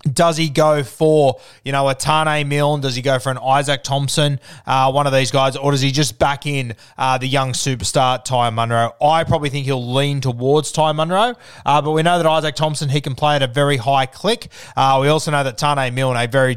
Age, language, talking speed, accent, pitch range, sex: 20-39, English, 230 wpm, Australian, 130-150 Hz, male